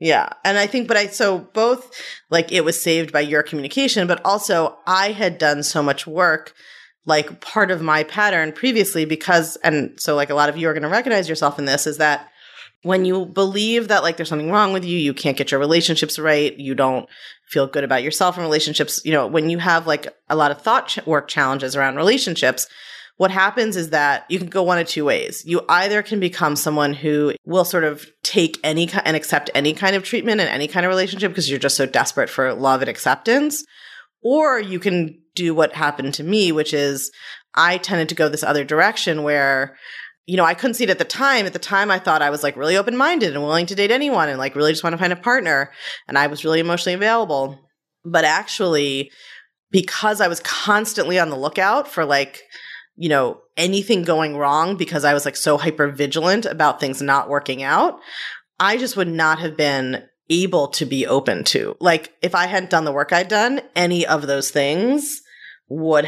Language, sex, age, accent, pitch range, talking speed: English, female, 30-49, American, 145-190 Hz, 215 wpm